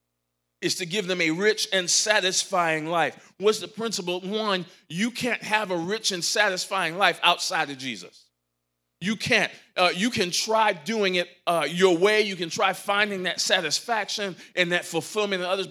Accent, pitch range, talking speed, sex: American, 160-210 Hz, 175 wpm, male